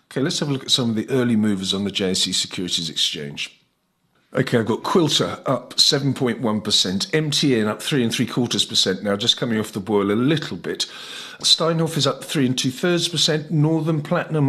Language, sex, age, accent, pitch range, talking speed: English, male, 50-69, British, 110-150 Hz, 210 wpm